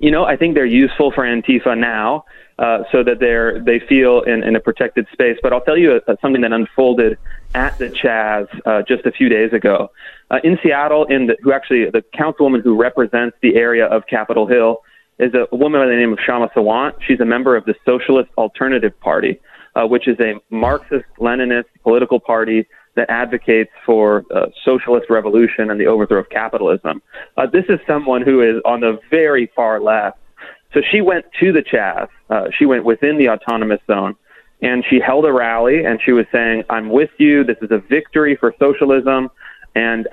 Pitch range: 115-140 Hz